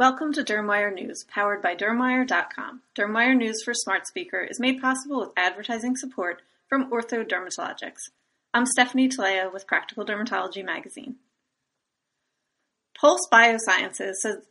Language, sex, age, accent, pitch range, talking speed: English, female, 30-49, American, 200-255 Hz, 125 wpm